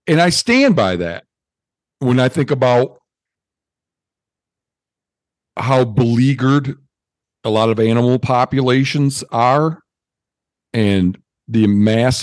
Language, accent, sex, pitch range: English, American, male, 110-140 Hz